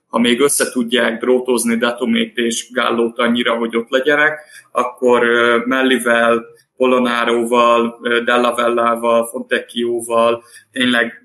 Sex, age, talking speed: male, 20-39, 100 wpm